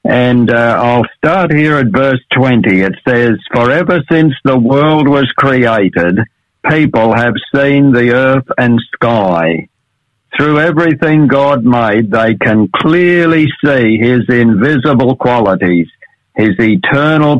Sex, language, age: male, English, 60-79